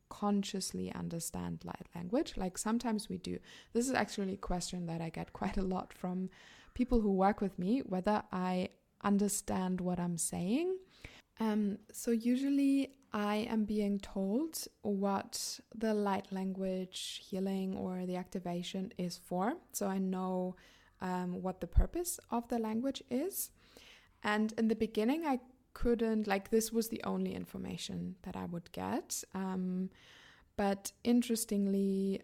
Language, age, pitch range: English, 20-39, 185-220 Hz